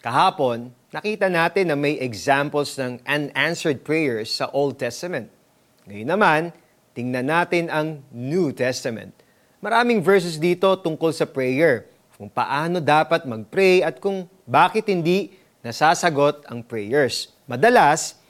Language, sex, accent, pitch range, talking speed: Filipino, male, native, 135-195 Hz, 120 wpm